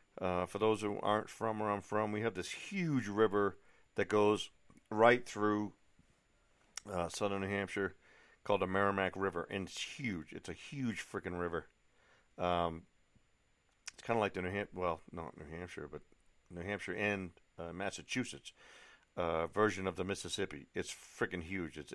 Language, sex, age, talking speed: English, male, 50-69, 165 wpm